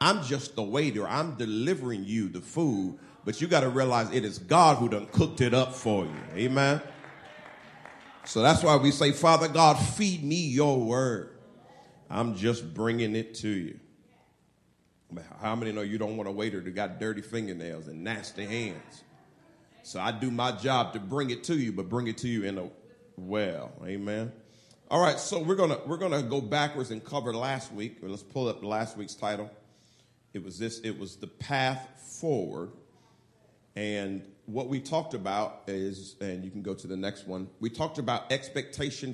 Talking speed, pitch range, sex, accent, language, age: 190 wpm, 105-130 Hz, male, American, English, 40-59